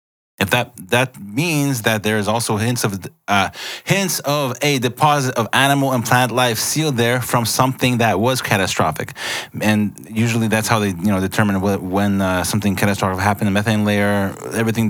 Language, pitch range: English, 95-120 Hz